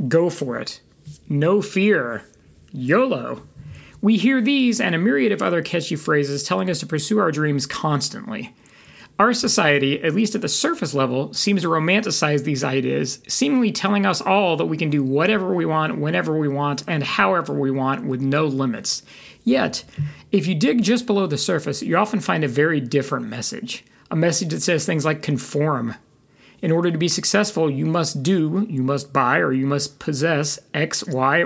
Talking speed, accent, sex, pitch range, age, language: 185 wpm, American, male, 145-210 Hz, 40-59, English